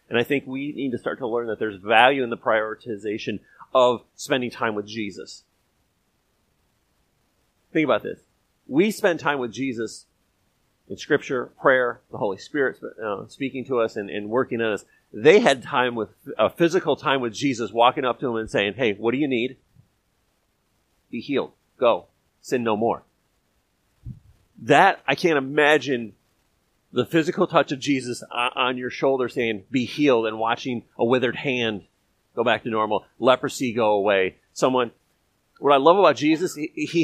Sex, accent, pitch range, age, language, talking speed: male, American, 115-150 Hz, 40-59, English, 165 wpm